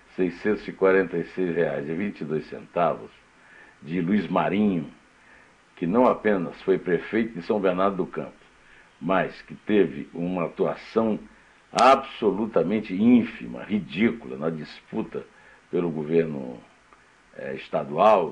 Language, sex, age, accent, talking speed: Portuguese, male, 60-79, Brazilian, 95 wpm